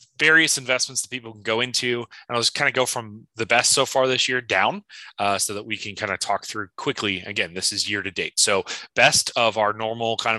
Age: 30-49